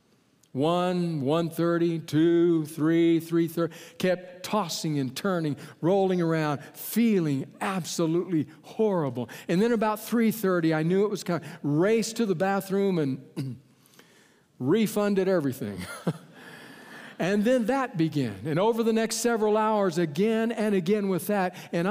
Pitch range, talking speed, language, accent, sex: 155-215 Hz, 130 wpm, English, American, male